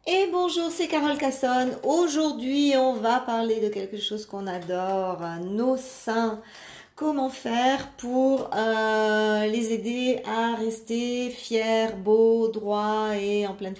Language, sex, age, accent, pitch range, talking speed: French, female, 40-59, French, 190-225 Hz, 130 wpm